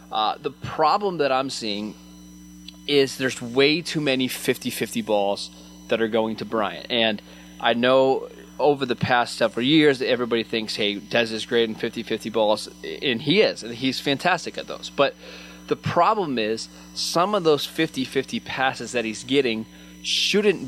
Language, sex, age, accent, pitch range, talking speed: English, male, 20-39, American, 100-130 Hz, 165 wpm